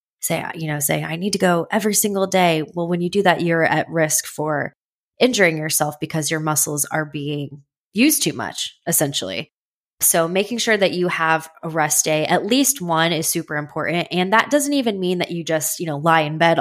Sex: female